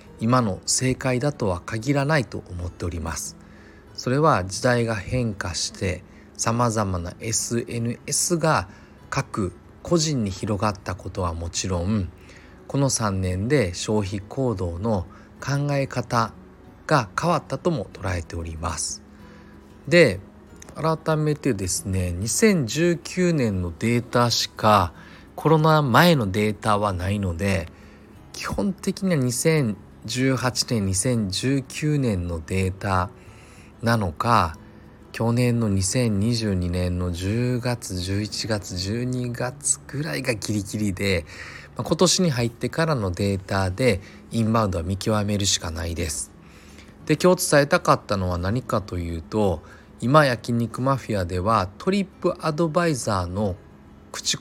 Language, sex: Japanese, male